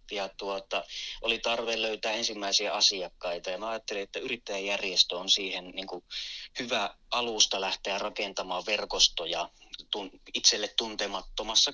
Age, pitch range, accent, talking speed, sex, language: 30-49, 100-115 Hz, native, 115 wpm, male, Finnish